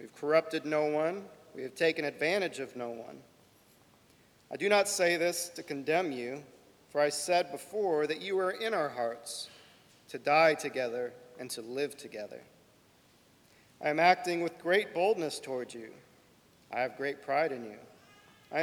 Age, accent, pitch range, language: 40-59, American, 140-195 Hz, English